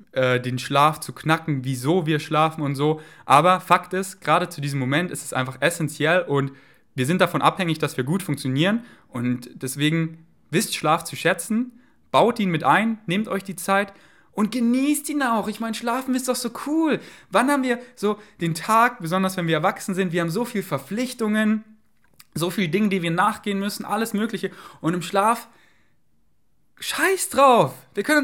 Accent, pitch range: German, 140-225 Hz